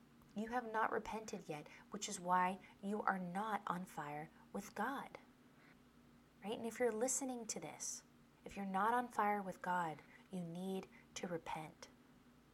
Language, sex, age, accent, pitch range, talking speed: English, female, 20-39, American, 180-225 Hz, 160 wpm